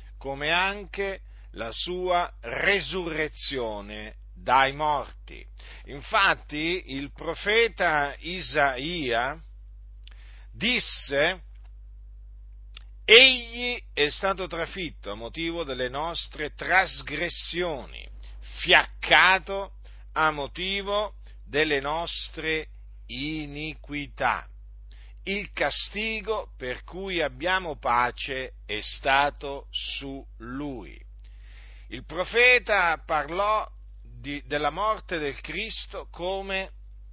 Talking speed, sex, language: 75 wpm, male, Italian